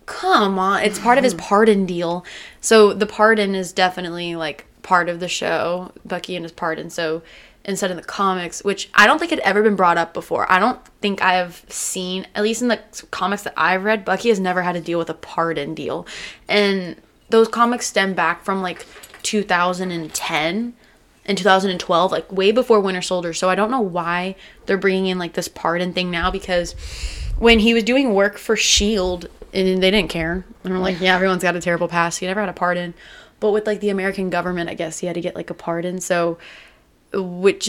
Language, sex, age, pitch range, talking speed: English, female, 20-39, 175-210 Hz, 210 wpm